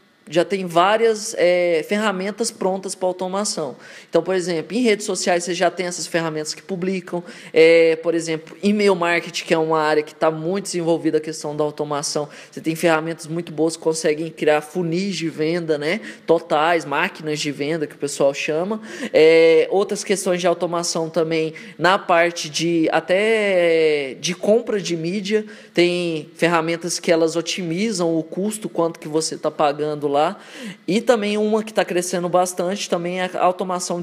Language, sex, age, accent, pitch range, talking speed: Portuguese, male, 20-39, Brazilian, 160-200 Hz, 170 wpm